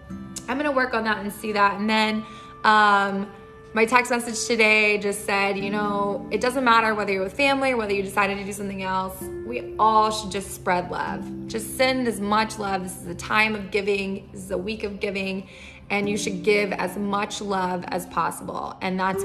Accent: American